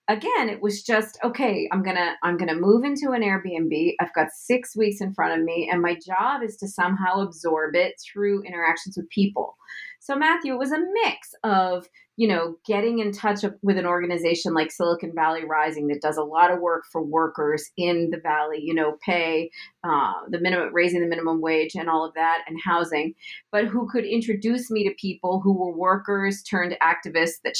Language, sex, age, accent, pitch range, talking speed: English, female, 40-59, American, 175-210 Hz, 205 wpm